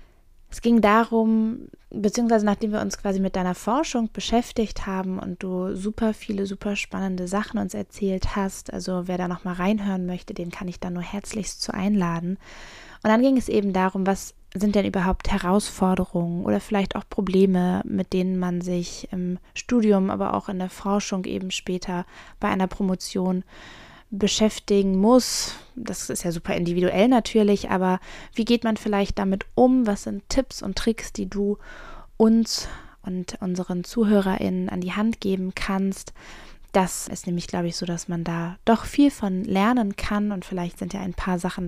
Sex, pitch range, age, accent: female, 185-215 Hz, 20-39, German